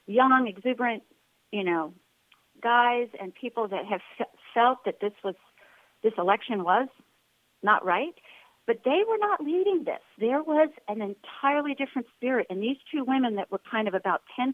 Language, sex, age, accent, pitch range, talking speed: English, female, 50-69, American, 205-275 Hz, 165 wpm